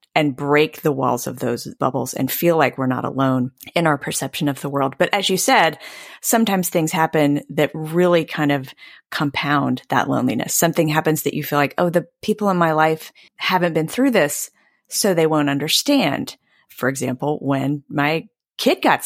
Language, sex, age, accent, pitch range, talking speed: English, female, 30-49, American, 155-225 Hz, 185 wpm